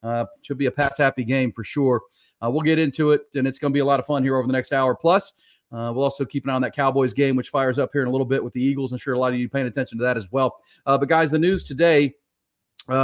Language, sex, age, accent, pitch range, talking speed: English, male, 40-59, American, 130-150 Hz, 315 wpm